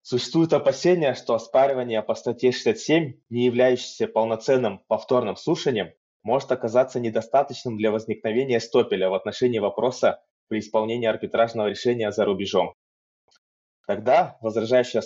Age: 20-39